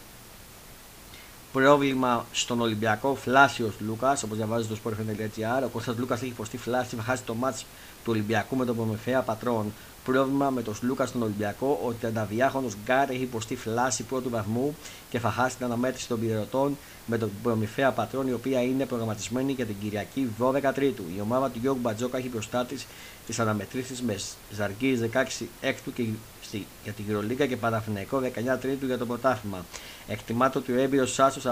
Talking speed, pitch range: 160 wpm, 110-130 Hz